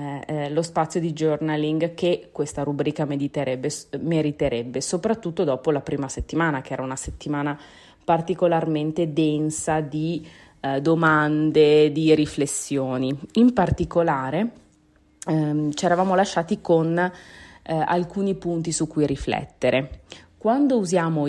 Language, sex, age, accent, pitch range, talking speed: Italian, female, 30-49, native, 145-175 Hz, 115 wpm